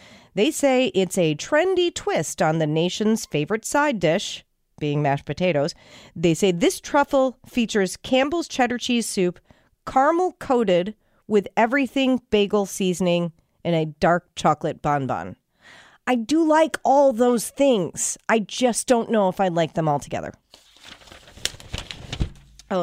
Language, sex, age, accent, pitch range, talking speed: English, female, 40-59, American, 165-235 Hz, 135 wpm